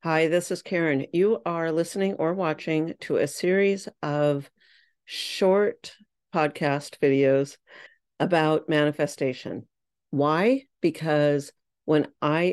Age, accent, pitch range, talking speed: 50-69, American, 145-175 Hz, 105 wpm